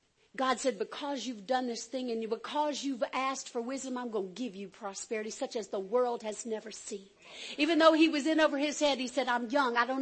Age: 50-69